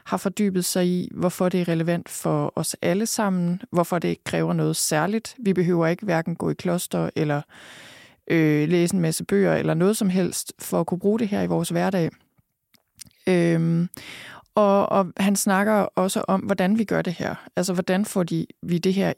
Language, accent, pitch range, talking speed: Danish, native, 170-200 Hz, 195 wpm